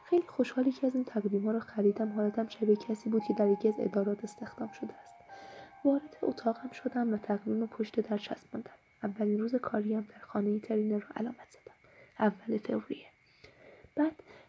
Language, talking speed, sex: Persian, 180 wpm, female